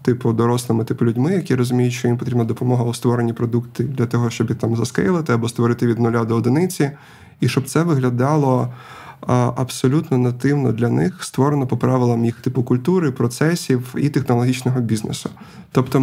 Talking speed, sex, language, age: 160 wpm, male, Ukrainian, 20-39